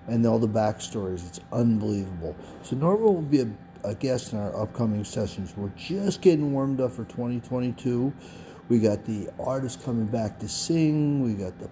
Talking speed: 180 wpm